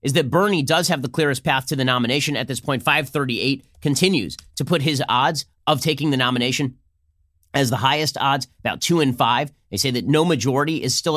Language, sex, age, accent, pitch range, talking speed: English, male, 30-49, American, 115-155 Hz, 210 wpm